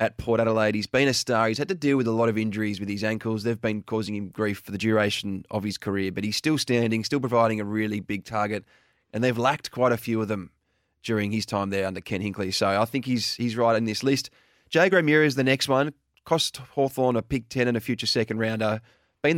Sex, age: male, 20-39